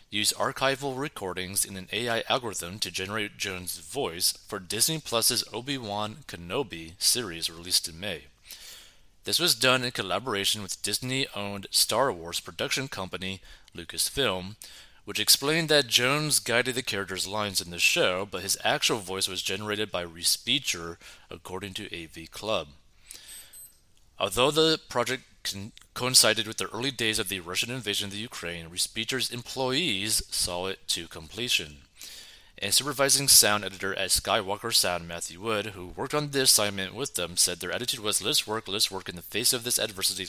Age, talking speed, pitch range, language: 30-49, 160 wpm, 95-125 Hz, English